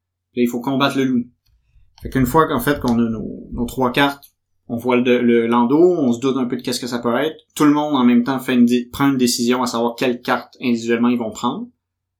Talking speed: 250 wpm